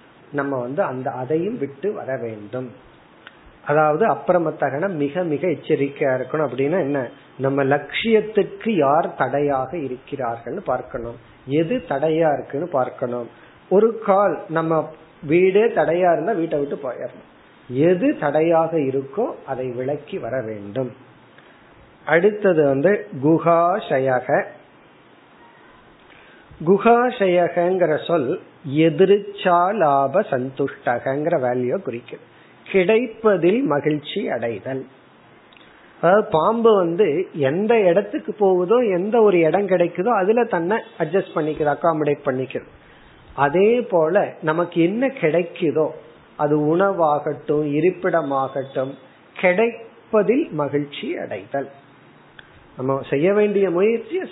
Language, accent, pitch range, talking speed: Tamil, native, 140-195 Hz, 80 wpm